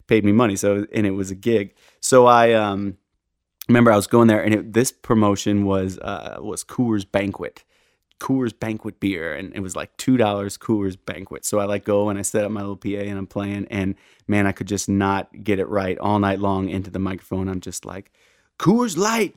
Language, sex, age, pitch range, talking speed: English, male, 30-49, 100-115 Hz, 215 wpm